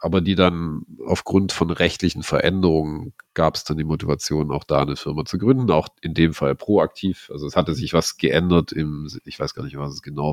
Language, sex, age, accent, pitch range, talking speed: English, male, 40-59, German, 75-90 Hz, 215 wpm